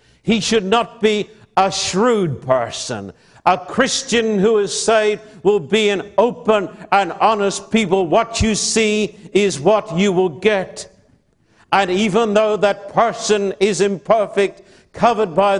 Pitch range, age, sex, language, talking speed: 150-200 Hz, 60-79, male, English, 140 wpm